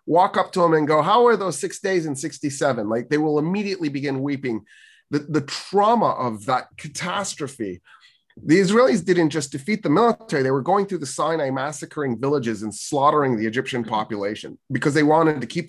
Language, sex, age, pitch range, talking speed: English, male, 30-49, 130-165 Hz, 190 wpm